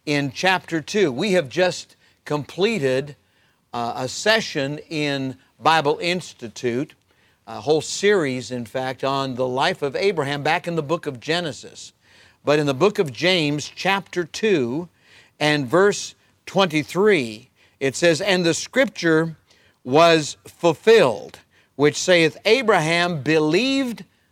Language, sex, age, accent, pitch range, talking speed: English, male, 50-69, American, 135-175 Hz, 125 wpm